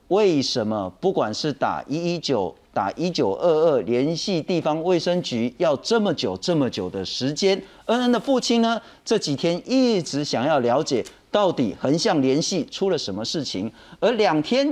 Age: 40-59